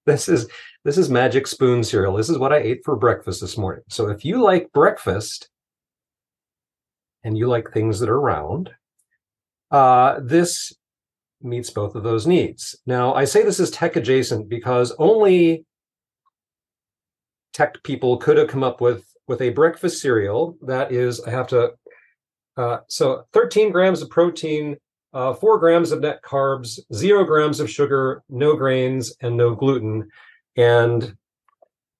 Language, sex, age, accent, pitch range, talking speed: English, male, 40-59, American, 120-165 Hz, 155 wpm